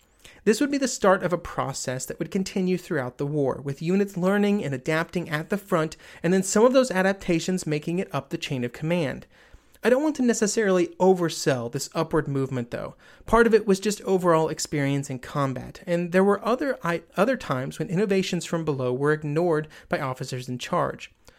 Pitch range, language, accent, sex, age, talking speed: 150-195 Hz, English, American, male, 30-49, 200 wpm